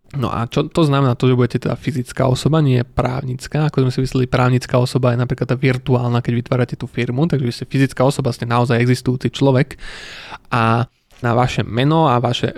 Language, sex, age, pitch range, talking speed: Slovak, male, 20-39, 125-135 Hz, 190 wpm